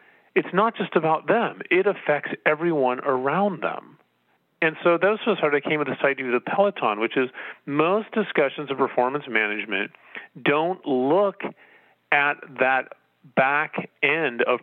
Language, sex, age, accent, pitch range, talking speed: English, male, 40-59, American, 120-175 Hz, 150 wpm